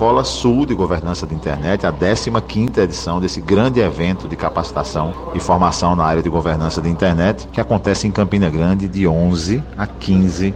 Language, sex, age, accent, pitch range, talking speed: Portuguese, male, 50-69, Brazilian, 80-100 Hz, 175 wpm